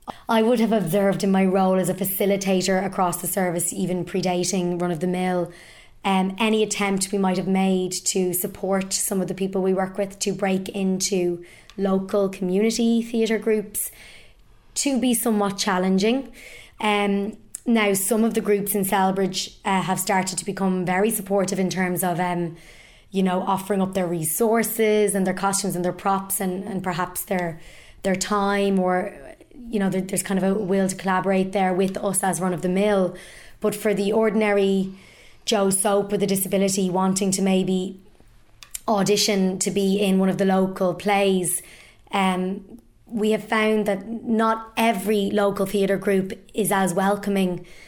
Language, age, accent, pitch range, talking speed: English, 20-39, Irish, 185-205 Hz, 170 wpm